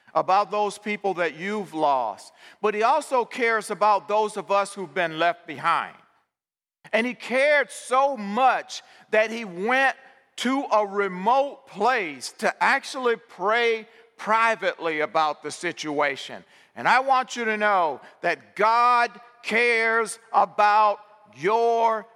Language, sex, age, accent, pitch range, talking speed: English, male, 50-69, American, 200-235 Hz, 130 wpm